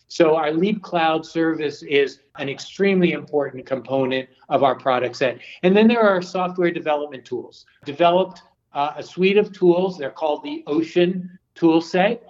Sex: male